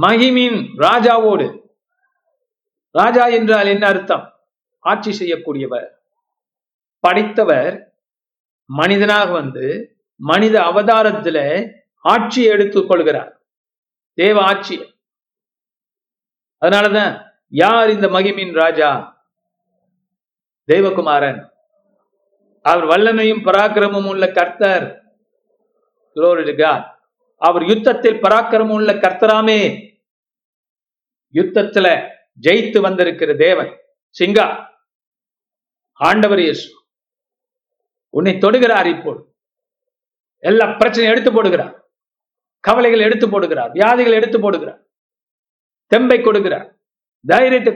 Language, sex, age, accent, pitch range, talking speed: Tamil, male, 50-69, native, 195-250 Hz, 70 wpm